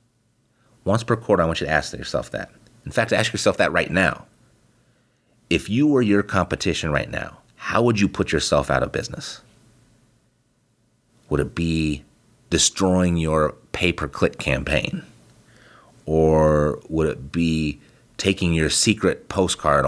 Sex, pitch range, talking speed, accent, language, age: male, 75-115 Hz, 140 wpm, American, English, 30-49